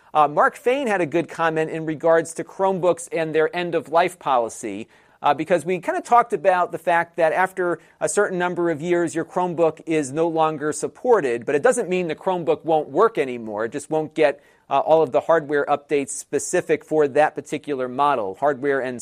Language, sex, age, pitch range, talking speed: English, male, 40-59, 145-175 Hz, 200 wpm